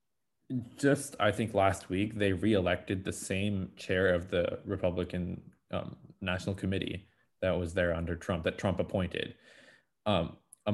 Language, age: English, 20-39